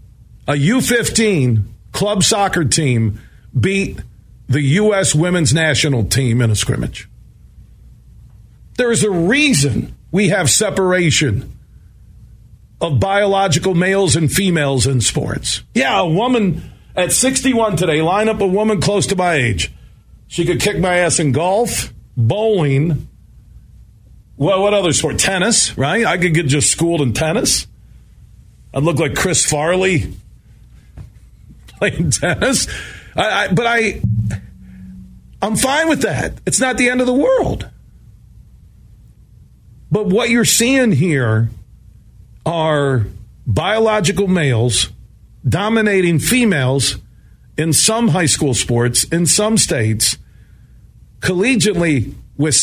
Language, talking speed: English, 120 wpm